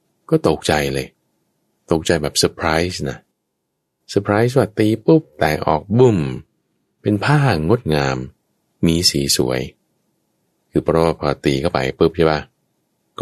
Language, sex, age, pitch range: Thai, male, 20-39, 70-105 Hz